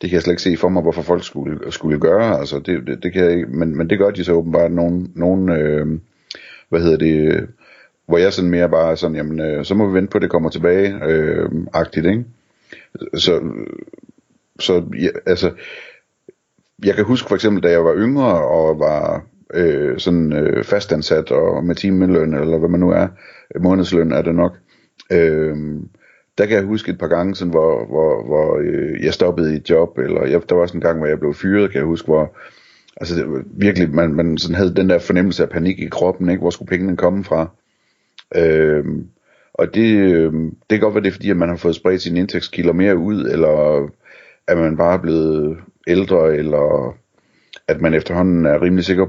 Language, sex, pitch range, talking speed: Danish, male, 80-95 Hz, 215 wpm